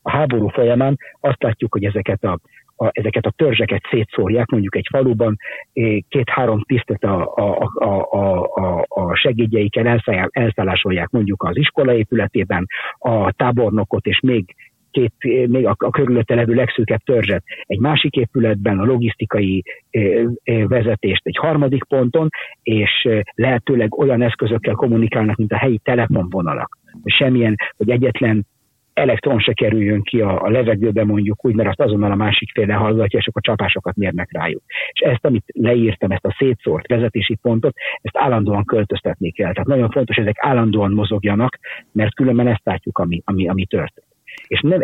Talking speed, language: 150 wpm, Hungarian